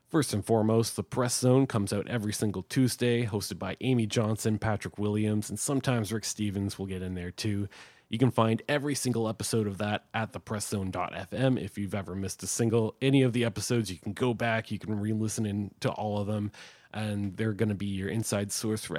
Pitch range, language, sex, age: 95-115 Hz, English, male, 20-39